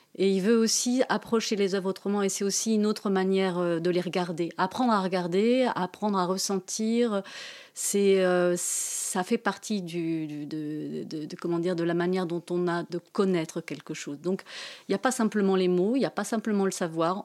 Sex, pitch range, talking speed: female, 170-210 Hz, 210 wpm